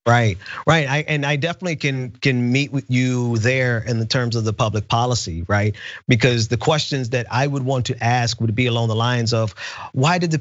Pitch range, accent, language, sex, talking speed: 120-155 Hz, American, English, male, 220 wpm